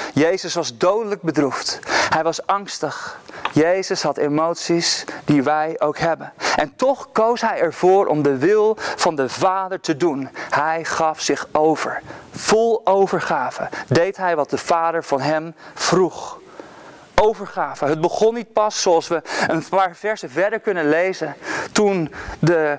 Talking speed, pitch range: 145 wpm, 160-215 Hz